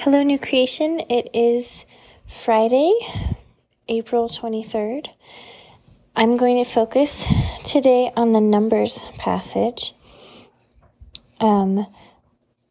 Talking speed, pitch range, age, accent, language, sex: 85 wpm, 195-235 Hz, 30-49, American, English, female